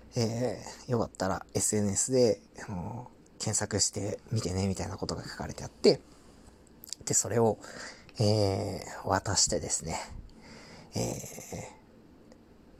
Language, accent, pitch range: Japanese, native, 105-135 Hz